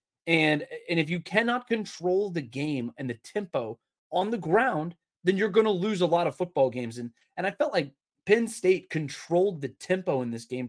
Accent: American